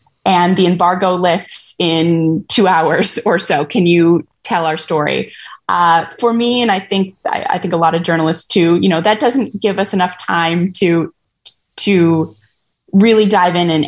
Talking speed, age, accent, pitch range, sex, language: 180 wpm, 20-39, American, 165-205 Hz, female, English